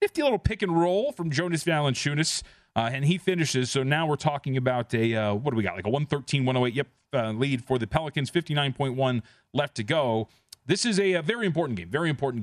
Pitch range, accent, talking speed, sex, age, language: 115-145 Hz, American, 205 wpm, male, 30-49, English